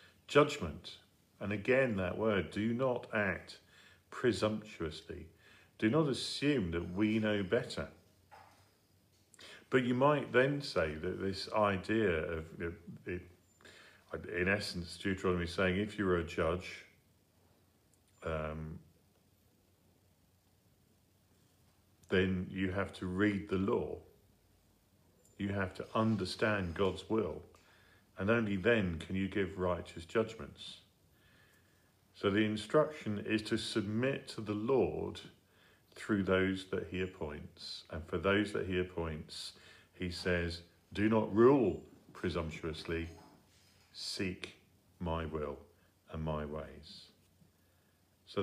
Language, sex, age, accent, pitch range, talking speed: English, male, 50-69, British, 90-105 Hz, 110 wpm